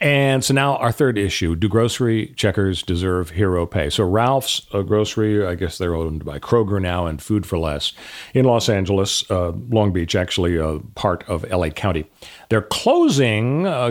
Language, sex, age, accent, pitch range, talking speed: English, male, 40-59, American, 100-140 Hz, 175 wpm